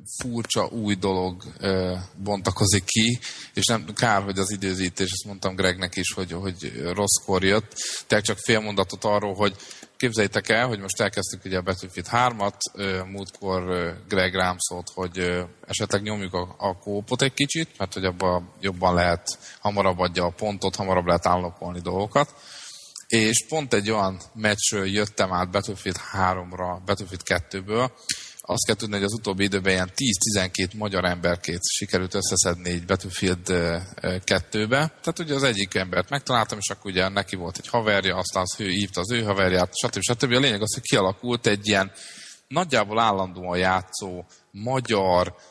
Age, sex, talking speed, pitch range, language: 20-39, male, 155 wpm, 90-110 Hz, Hungarian